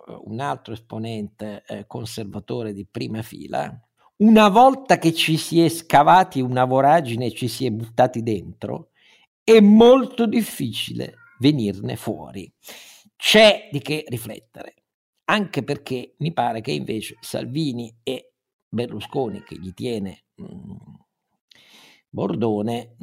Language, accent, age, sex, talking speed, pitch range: Italian, native, 50-69, male, 115 wpm, 110-160 Hz